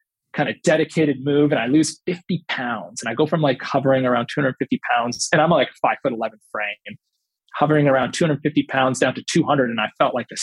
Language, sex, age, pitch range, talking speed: English, male, 20-39, 130-165 Hz, 220 wpm